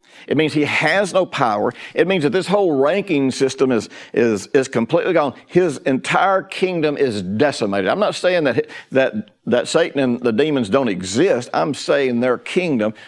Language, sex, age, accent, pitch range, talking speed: English, male, 60-79, American, 125-170 Hz, 170 wpm